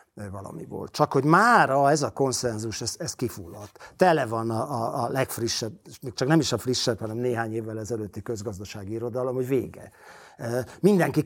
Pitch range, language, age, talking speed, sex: 115-140 Hz, Hungarian, 50-69, 165 wpm, male